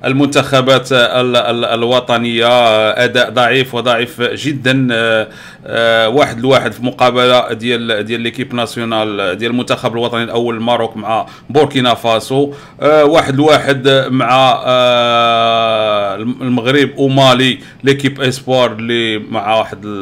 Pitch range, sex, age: 115-135 Hz, male, 40-59